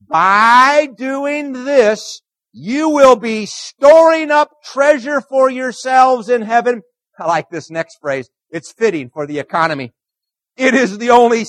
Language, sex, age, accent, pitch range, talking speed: English, male, 50-69, American, 165-260 Hz, 140 wpm